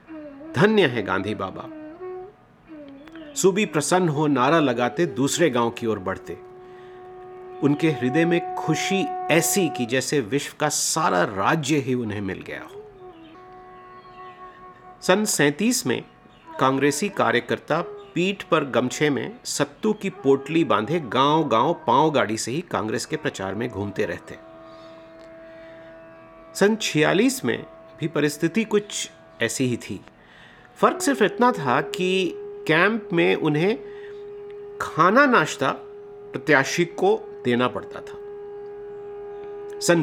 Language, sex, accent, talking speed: Hindi, male, native, 120 wpm